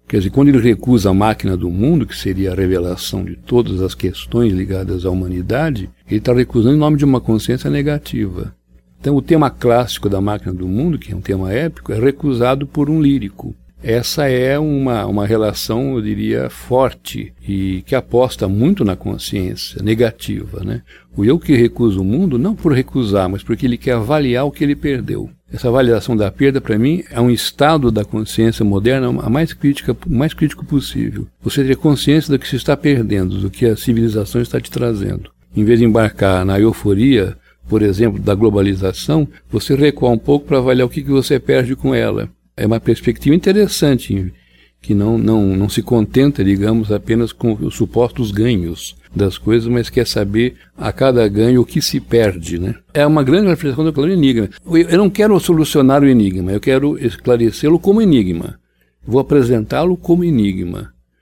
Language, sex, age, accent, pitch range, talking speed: Portuguese, male, 60-79, Brazilian, 100-140 Hz, 180 wpm